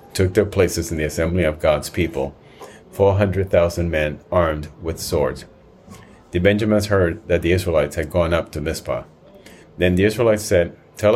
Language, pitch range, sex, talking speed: English, 85-100 Hz, male, 160 wpm